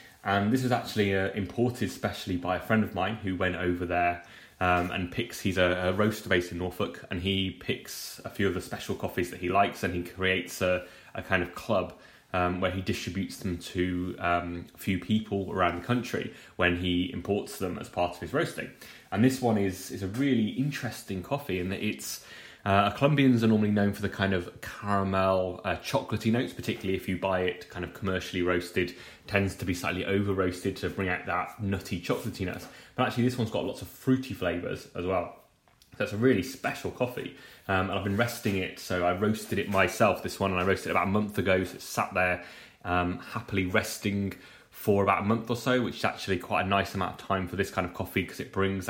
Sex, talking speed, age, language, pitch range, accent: male, 220 wpm, 20-39, English, 90-105 Hz, British